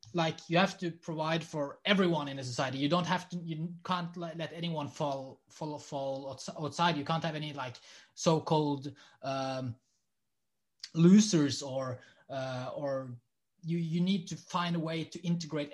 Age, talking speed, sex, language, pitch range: 20-39, 165 wpm, male, English, 135-165 Hz